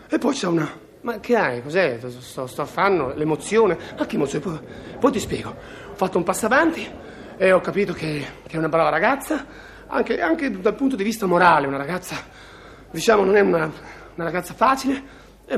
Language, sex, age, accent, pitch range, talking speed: Italian, male, 40-59, native, 145-205 Hz, 190 wpm